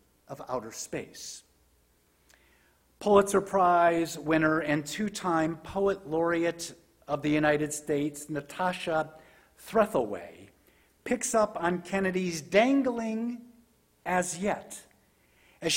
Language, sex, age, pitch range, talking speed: English, male, 50-69, 155-205 Hz, 90 wpm